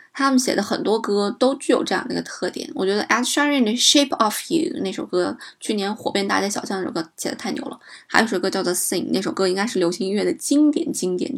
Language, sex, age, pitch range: Chinese, female, 20-39, 190-260 Hz